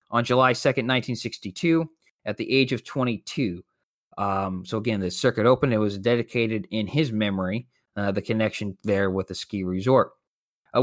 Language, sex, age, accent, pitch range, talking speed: English, male, 20-39, American, 110-145 Hz, 165 wpm